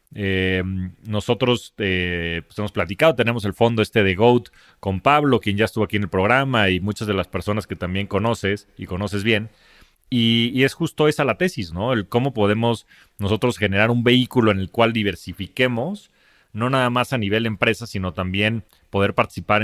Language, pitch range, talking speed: Spanish, 100-125 Hz, 185 wpm